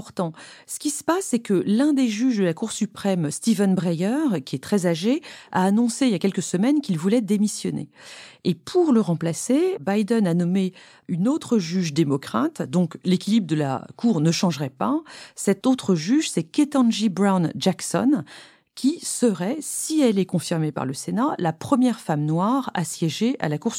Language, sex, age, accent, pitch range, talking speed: French, female, 40-59, French, 170-240 Hz, 185 wpm